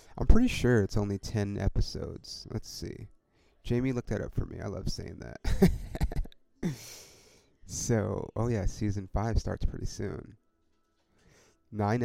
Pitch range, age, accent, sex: 95-115 Hz, 30-49, American, male